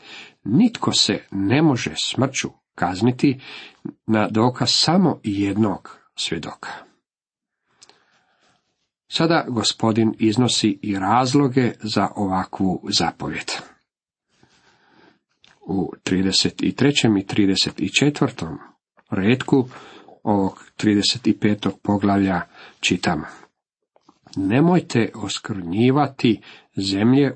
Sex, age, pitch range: male, 50-69, 100-140 Hz